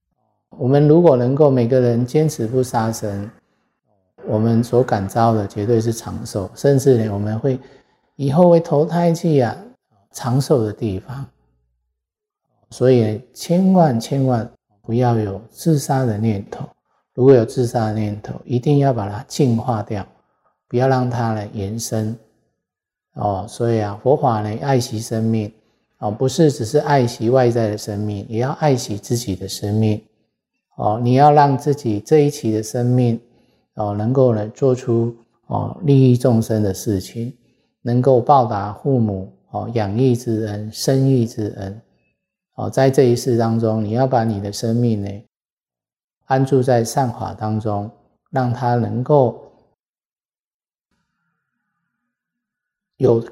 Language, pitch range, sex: Chinese, 110-135 Hz, male